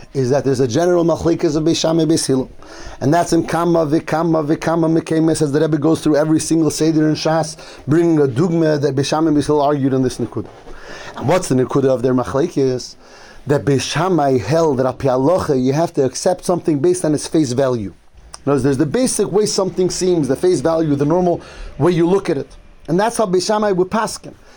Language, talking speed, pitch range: English, 195 wpm, 145-185 Hz